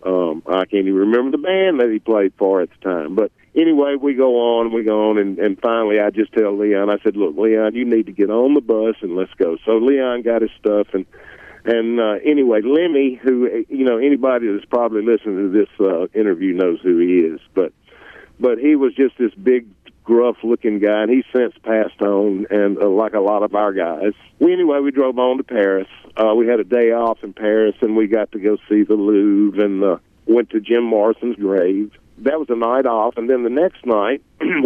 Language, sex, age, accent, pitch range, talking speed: English, male, 50-69, American, 105-135 Hz, 225 wpm